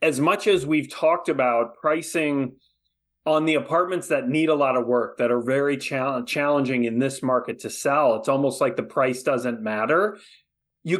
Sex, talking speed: male, 180 wpm